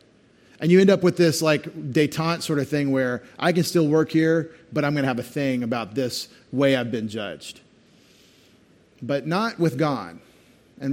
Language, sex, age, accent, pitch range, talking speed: English, male, 40-59, American, 125-160 Hz, 190 wpm